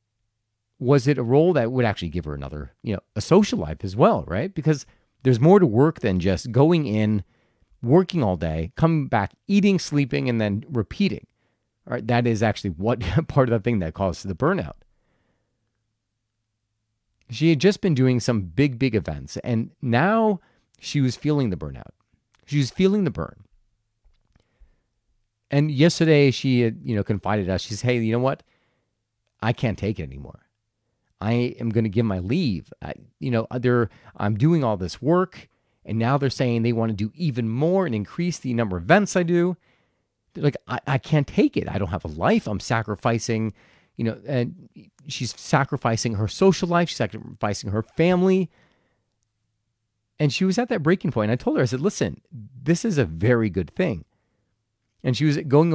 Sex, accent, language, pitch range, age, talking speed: male, American, English, 110-145 Hz, 40-59, 185 wpm